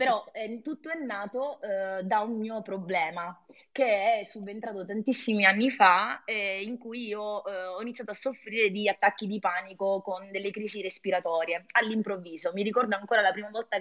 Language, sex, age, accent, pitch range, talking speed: Italian, female, 20-39, native, 185-225 Hz, 175 wpm